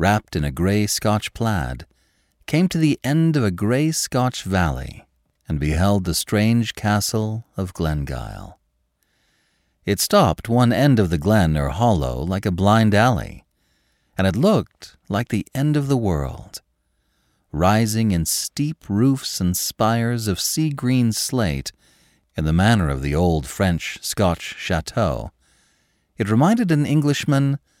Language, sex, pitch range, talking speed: English, male, 80-120 Hz, 140 wpm